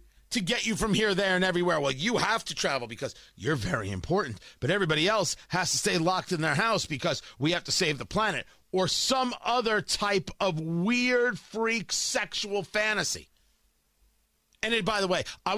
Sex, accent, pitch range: male, American, 150-210 Hz